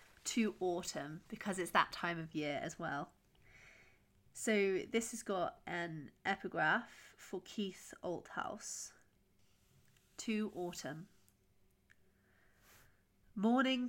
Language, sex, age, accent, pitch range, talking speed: English, female, 30-49, British, 170-200 Hz, 95 wpm